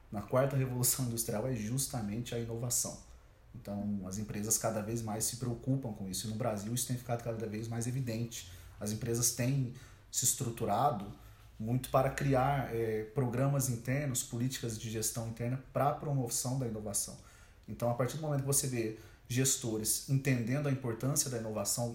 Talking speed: 170 wpm